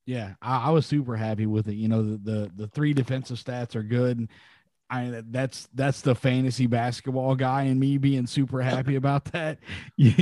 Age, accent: 30-49, American